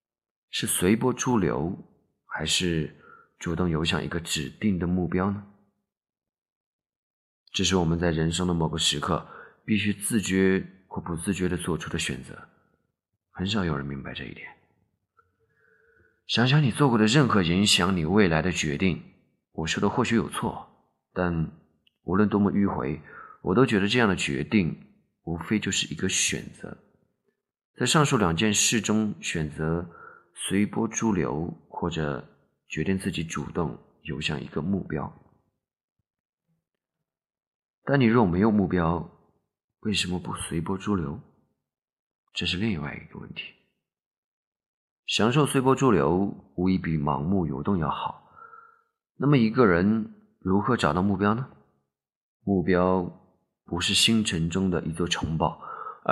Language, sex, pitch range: Chinese, male, 85-110 Hz